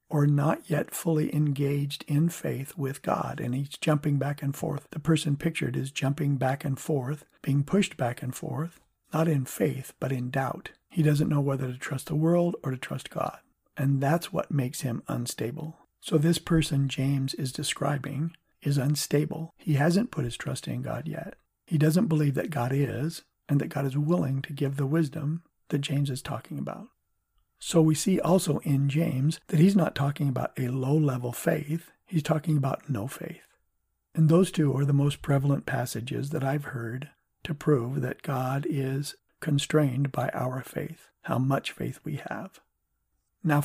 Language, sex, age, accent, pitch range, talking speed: English, male, 50-69, American, 135-160 Hz, 185 wpm